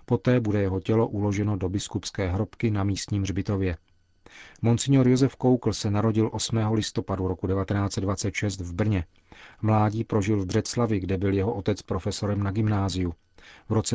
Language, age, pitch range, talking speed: Czech, 40-59, 100-115 Hz, 150 wpm